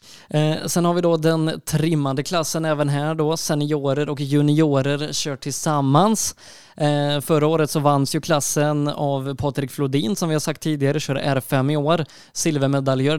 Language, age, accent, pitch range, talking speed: Swedish, 20-39, native, 140-160 Hz, 155 wpm